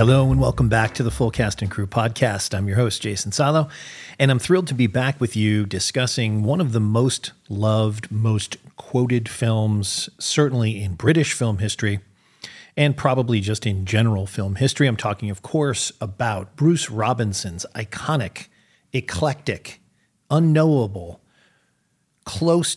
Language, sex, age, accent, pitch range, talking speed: English, male, 40-59, American, 105-135 Hz, 150 wpm